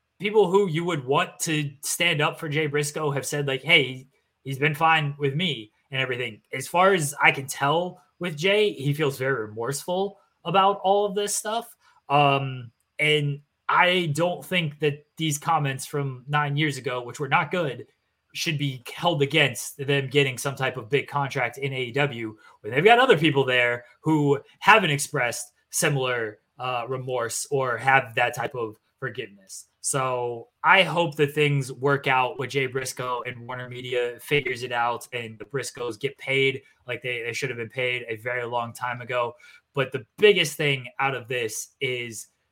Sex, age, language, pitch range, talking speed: male, 20-39, English, 130-160 Hz, 180 wpm